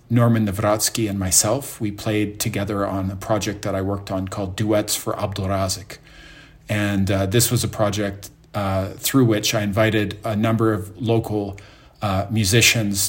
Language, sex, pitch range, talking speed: English, male, 100-115 Hz, 165 wpm